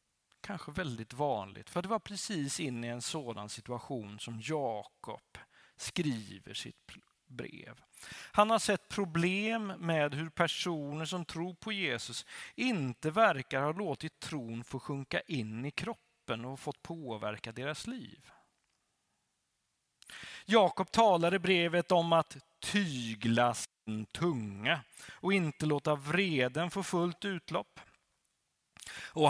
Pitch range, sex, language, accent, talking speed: 130-185 Hz, male, Swedish, native, 120 wpm